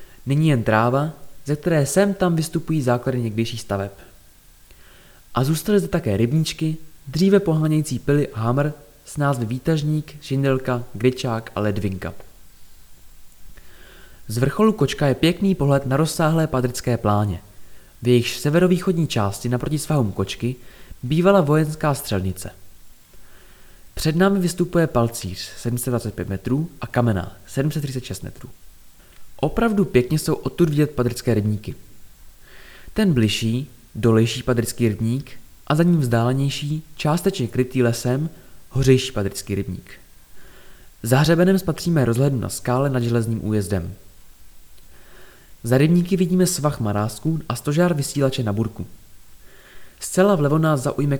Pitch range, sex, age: 105-155 Hz, male, 20-39